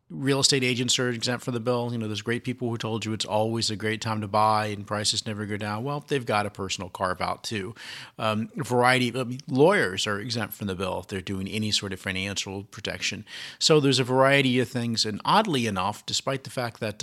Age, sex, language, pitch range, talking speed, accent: 40-59, male, English, 100-125 Hz, 240 wpm, American